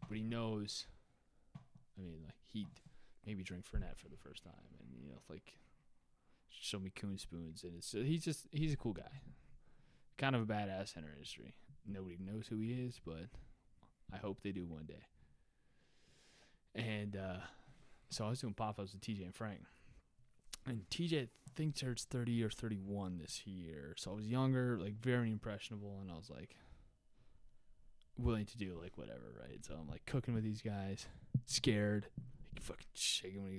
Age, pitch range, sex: 20-39, 95-120 Hz, male